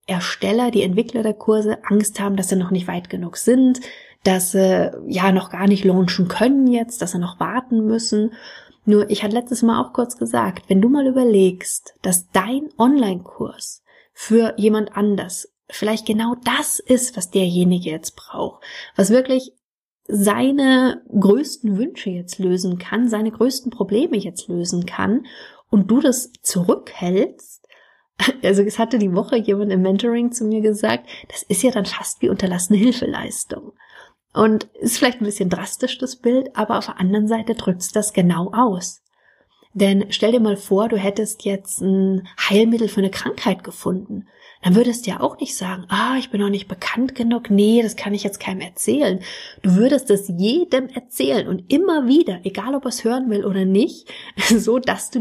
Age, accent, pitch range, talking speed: 30-49, German, 195-240 Hz, 175 wpm